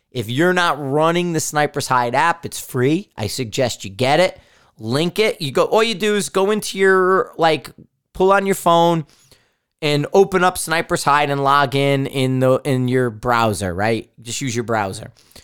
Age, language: 30-49, English